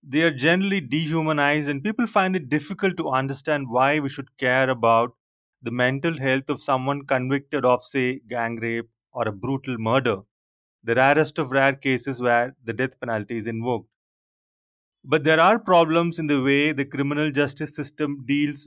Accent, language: Indian, English